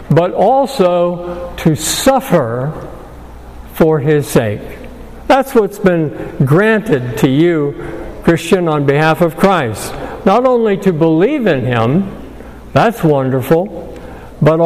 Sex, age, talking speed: male, 60-79, 110 wpm